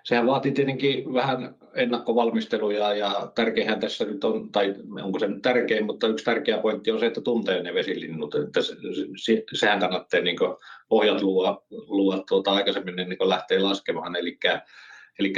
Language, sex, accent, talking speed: Finnish, male, native, 145 wpm